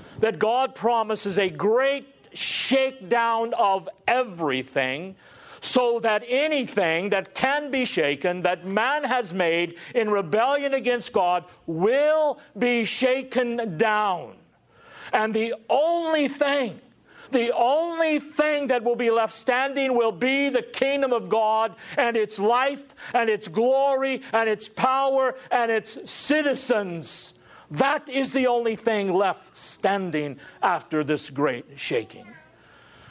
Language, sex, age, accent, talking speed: English, male, 50-69, American, 125 wpm